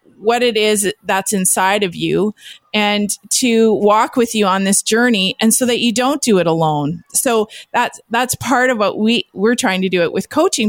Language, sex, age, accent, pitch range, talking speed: English, female, 20-39, American, 190-230 Hz, 210 wpm